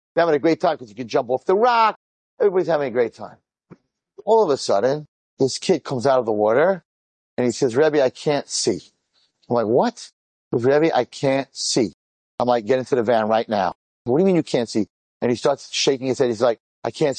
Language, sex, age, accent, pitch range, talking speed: English, male, 40-59, American, 125-190 Hz, 230 wpm